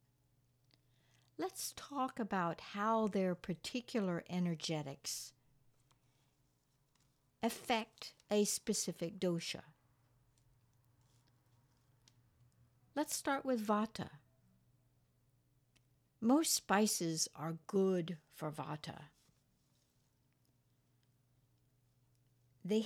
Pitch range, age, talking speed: 125-210 Hz, 60-79, 60 wpm